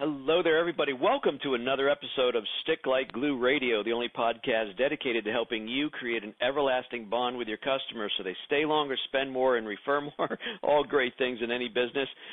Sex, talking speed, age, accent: male, 200 wpm, 50-69, American